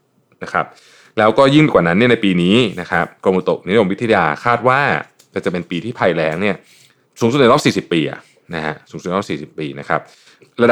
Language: Thai